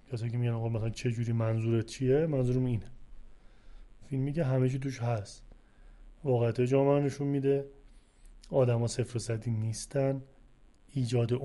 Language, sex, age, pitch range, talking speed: Arabic, male, 30-49, 120-140 Hz, 130 wpm